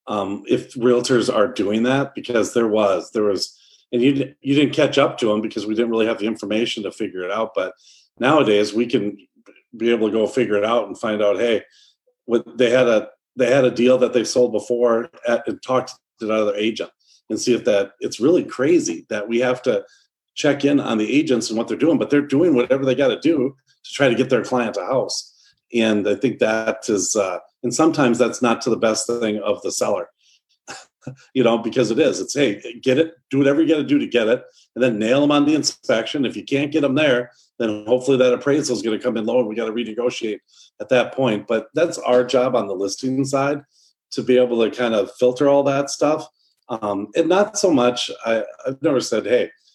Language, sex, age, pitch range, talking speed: English, male, 40-59, 115-140 Hz, 230 wpm